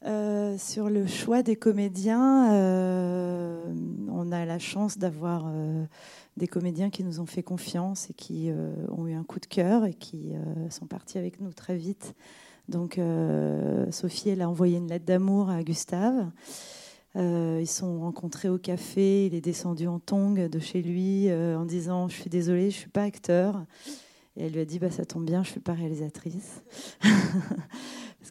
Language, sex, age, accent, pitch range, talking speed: French, female, 30-49, French, 170-220 Hz, 195 wpm